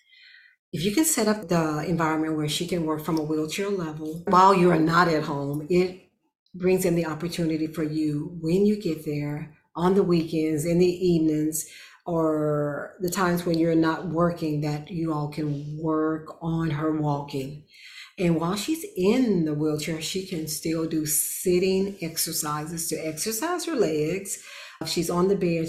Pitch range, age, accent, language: 155-180 Hz, 50-69, American, English